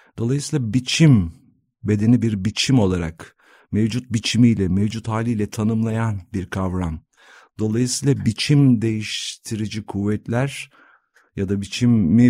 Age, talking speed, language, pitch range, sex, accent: 50-69, 100 wpm, Turkish, 95-120 Hz, male, native